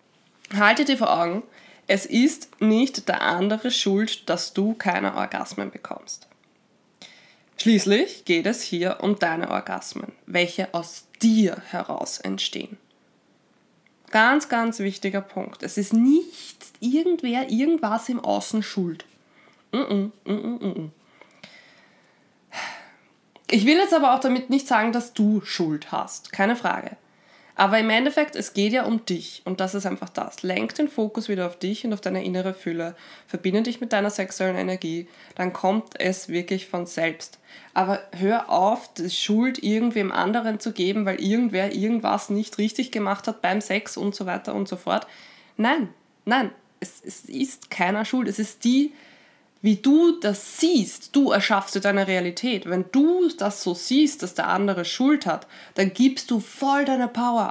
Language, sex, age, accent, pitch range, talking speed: German, female, 20-39, German, 190-245 Hz, 155 wpm